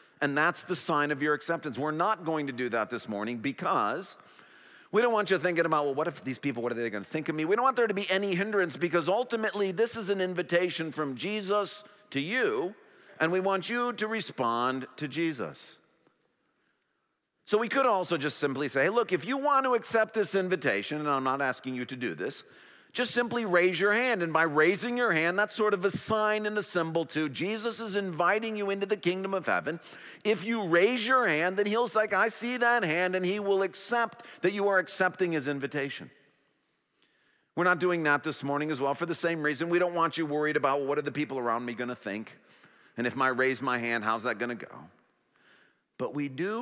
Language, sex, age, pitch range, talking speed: English, male, 50-69, 140-205 Hz, 225 wpm